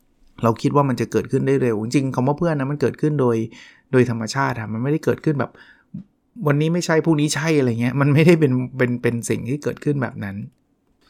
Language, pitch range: Thai, 115-150 Hz